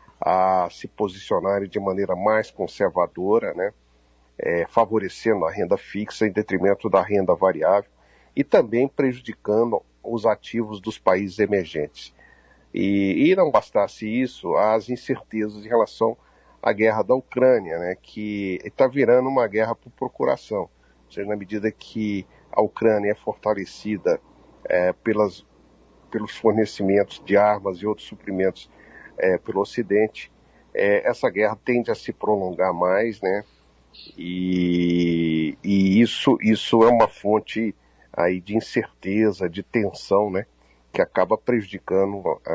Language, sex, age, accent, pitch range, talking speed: Portuguese, male, 50-69, Brazilian, 90-110 Hz, 130 wpm